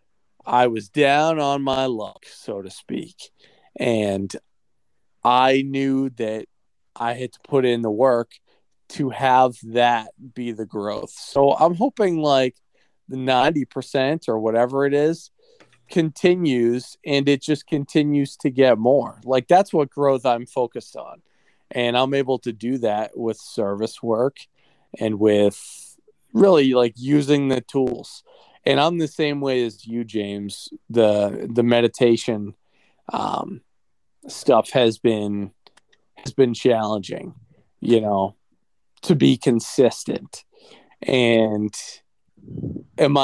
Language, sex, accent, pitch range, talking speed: English, male, American, 115-150 Hz, 130 wpm